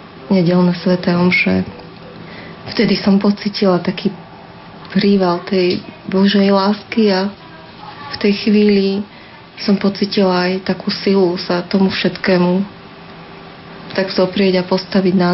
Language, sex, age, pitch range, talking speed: Slovak, female, 30-49, 180-200 Hz, 115 wpm